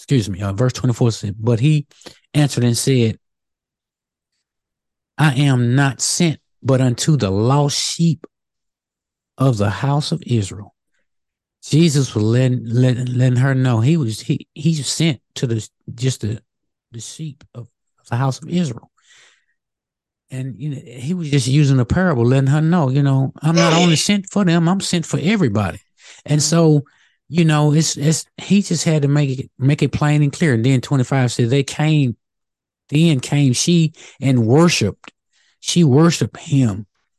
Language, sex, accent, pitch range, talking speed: English, male, American, 120-155 Hz, 170 wpm